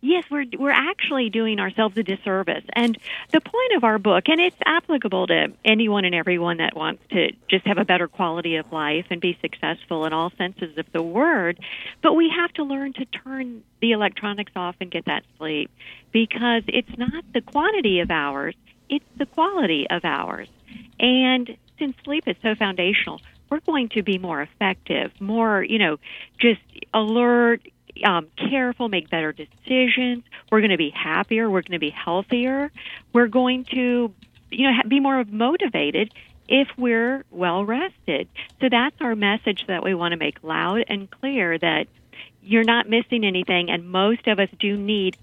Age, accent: 50-69, American